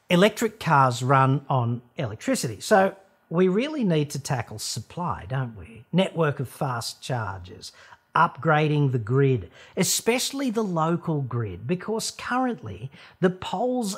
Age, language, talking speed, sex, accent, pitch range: 50-69, English, 125 wpm, male, Australian, 130-185 Hz